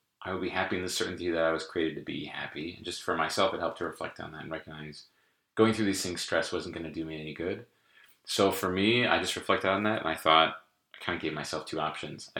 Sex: male